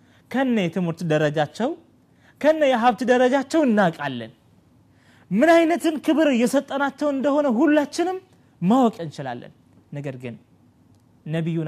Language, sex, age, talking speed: Amharic, male, 30-49, 90 wpm